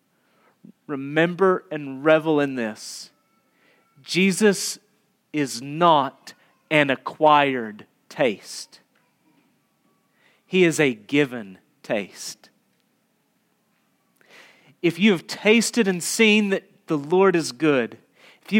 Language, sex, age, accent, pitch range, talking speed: English, male, 40-59, American, 140-190 Hz, 95 wpm